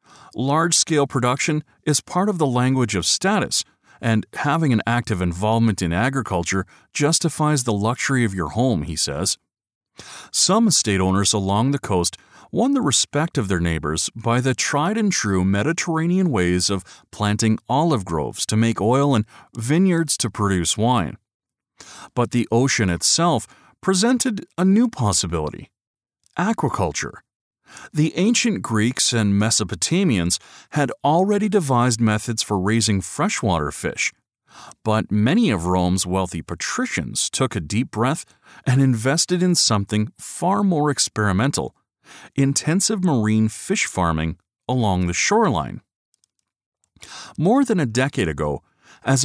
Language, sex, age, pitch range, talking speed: English, male, 40-59, 100-150 Hz, 125 wpm